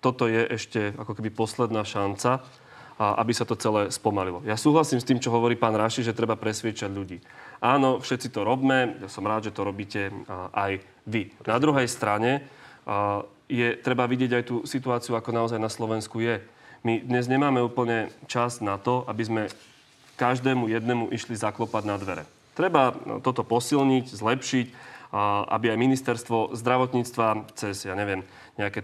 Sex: male